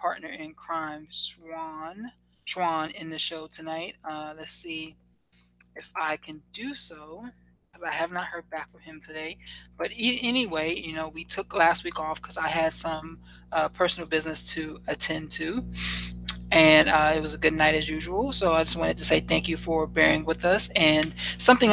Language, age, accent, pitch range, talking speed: English, 20-39, American, 155-165 Hz, 190 wpm